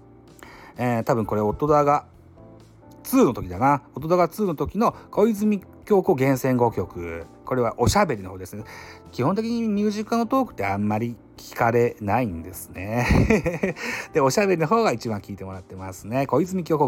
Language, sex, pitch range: Japanese, male, 105-150 Hz